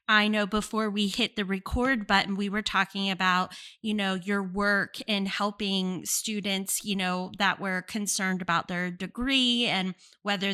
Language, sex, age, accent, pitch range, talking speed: English, female, 20-39, American, 195-240 Hz, 165 wpm